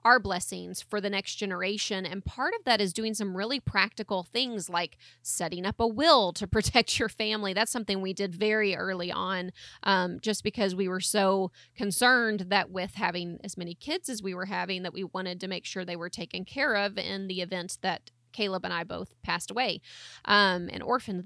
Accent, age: American, 30-49